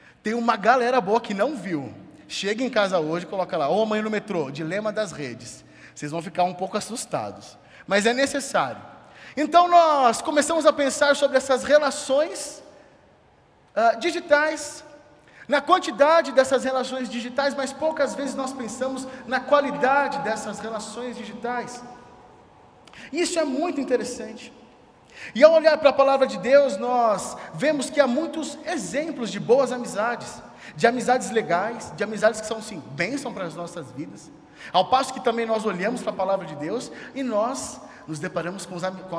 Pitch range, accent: 180-275 Hz, Brazilian